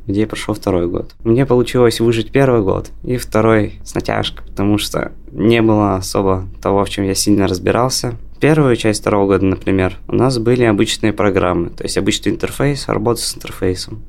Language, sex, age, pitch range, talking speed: Russian, male, 20-39, 100-120 Hz, 175 wpm